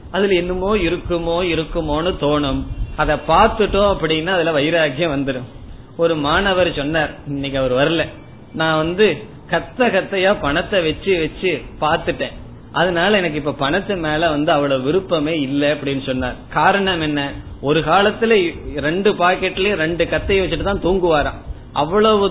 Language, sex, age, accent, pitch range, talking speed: Tamil, male, 20-39, native, 140-185 Hz, 130 wpm